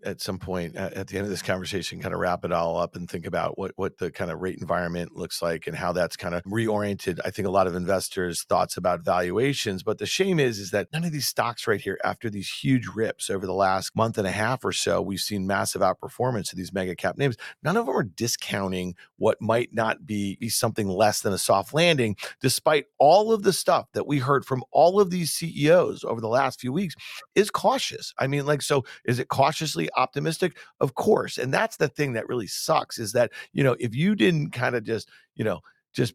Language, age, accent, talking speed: English, 40-59, American, 235 wpm